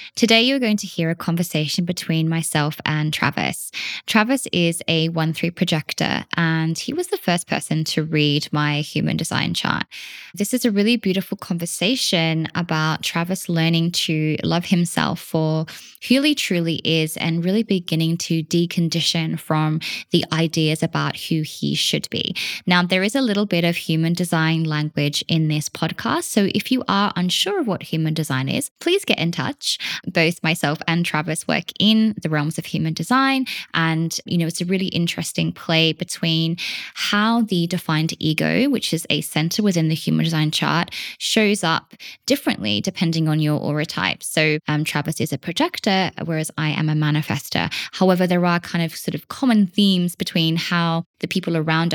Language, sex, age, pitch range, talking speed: English, female, 10-29, 160-190 Hz, 175 wpm